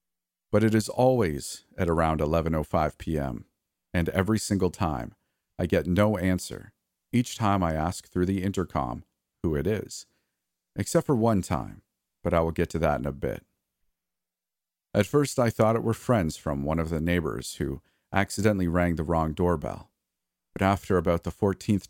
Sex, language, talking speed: male, English, 165 wpm